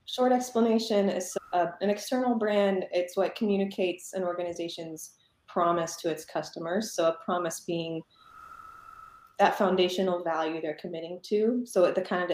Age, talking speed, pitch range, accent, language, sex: 20-39, 145 wpm, 165-210 Hz, American, English, female